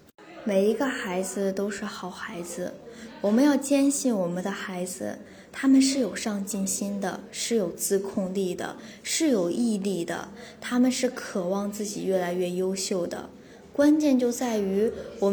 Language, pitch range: Chinese, 195-245 Hz